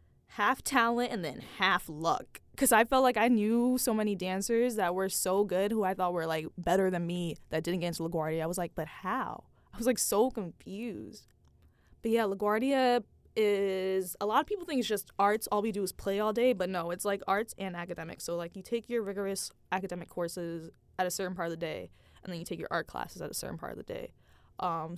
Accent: American